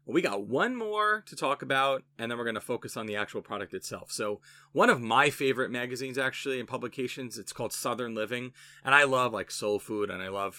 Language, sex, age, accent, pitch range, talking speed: English, male, 30-49, American, 115-145 Hz, 230 wpm